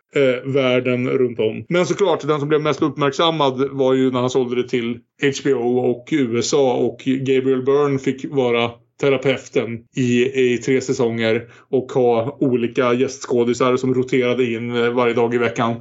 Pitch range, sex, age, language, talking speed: 125-140 Hz, male, 20-39, Swedish, 160 wpm